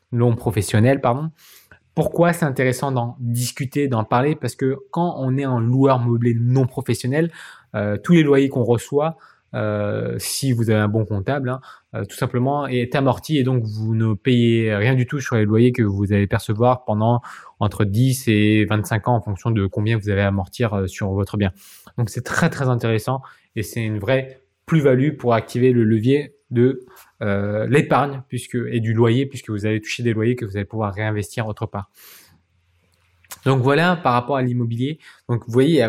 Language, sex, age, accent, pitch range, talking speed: French, male, 20-39, French, 110-135 Hz, 190 wpm